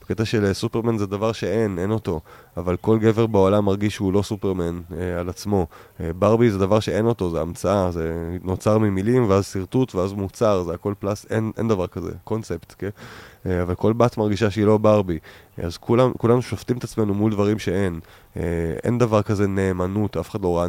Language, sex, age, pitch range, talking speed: Hebrew, male, 20-39, 90-110 Hz, 200 wpm